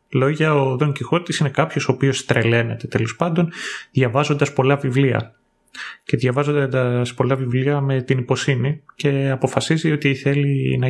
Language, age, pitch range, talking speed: Greek, 30-49, 120-150 Hz, 145 wpm